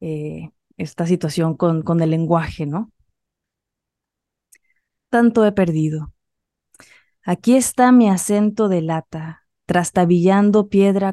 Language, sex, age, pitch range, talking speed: English, female, 20-39, 160-185 Hz, 100 wpm